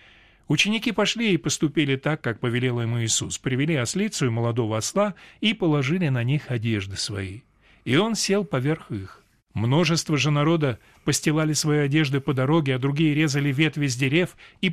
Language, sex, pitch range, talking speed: Russian, male, 120-160 Hz, 165 wpm